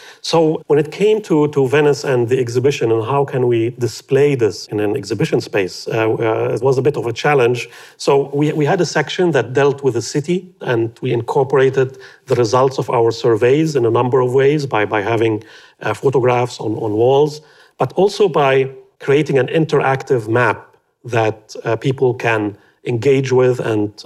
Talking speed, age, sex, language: 185 wpm, 40-59, male, English